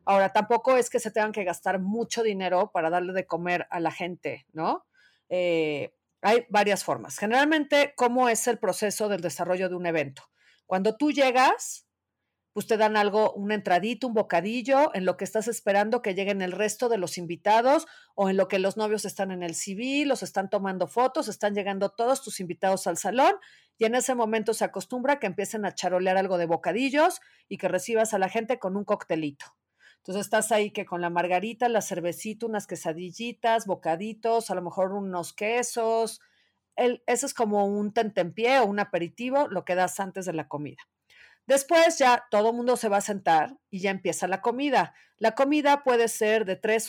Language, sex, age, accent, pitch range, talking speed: Spanish, female, 40-59, Mexican, 185-235 Hz, 195 wpm